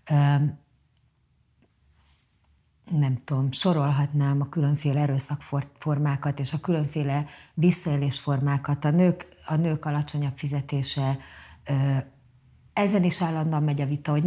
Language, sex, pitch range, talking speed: Hungarian, female, 145-190 Hz, 95 wpm